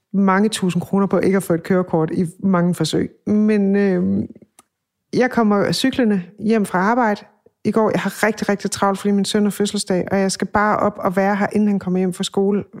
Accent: native